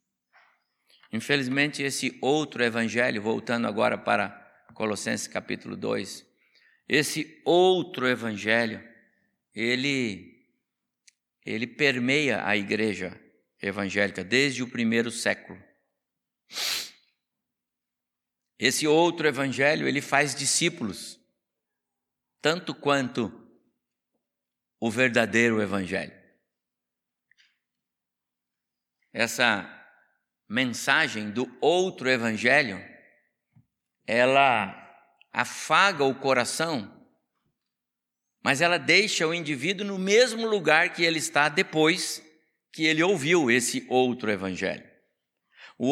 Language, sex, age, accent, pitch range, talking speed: Portuguese, male, 60-79, Brazilian, 120-190 Hz, 80 wpm